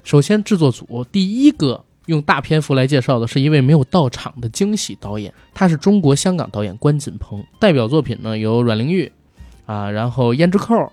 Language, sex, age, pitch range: Chinese, male, 20-39, 110-155 Hz